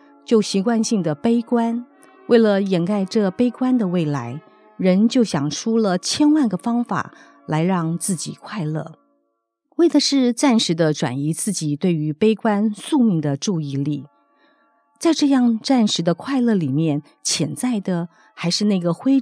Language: Chinese